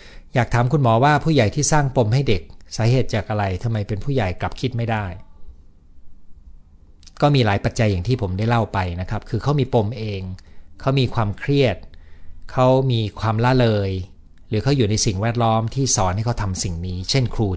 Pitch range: 85-120 Hz